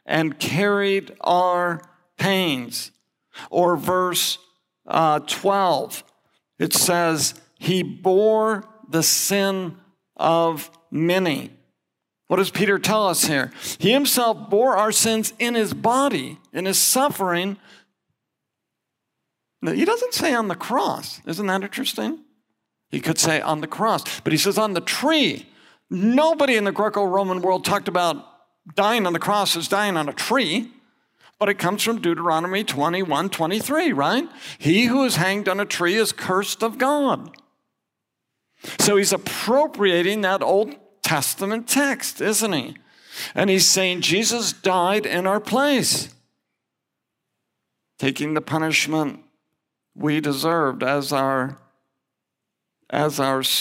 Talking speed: 130 wpm